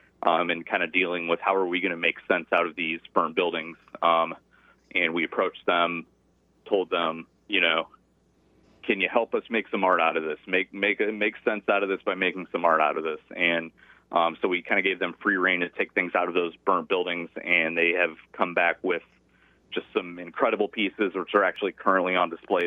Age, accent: 30-49, American